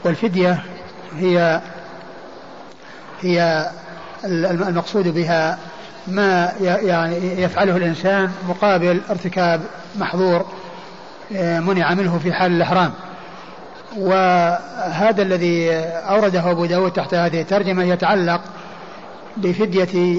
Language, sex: Arabic, male